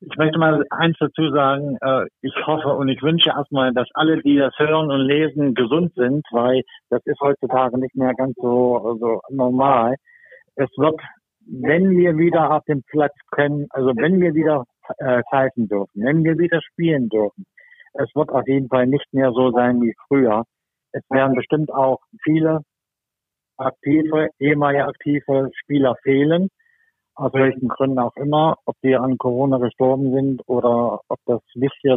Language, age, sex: German, 50-69, male